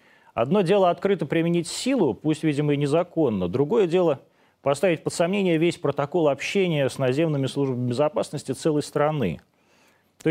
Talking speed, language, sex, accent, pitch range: 140 wpm, Russian, male, native, 135-175 Hz